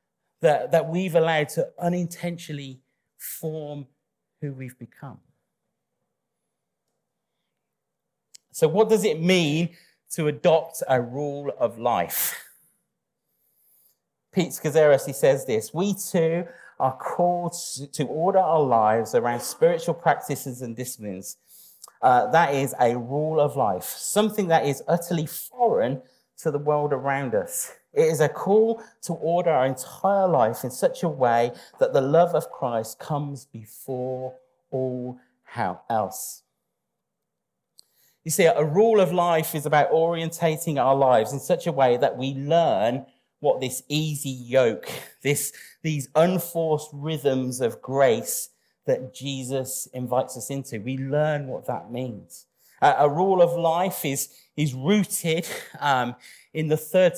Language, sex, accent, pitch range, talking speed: English, male, British, 130-170 Hz, 135 wpm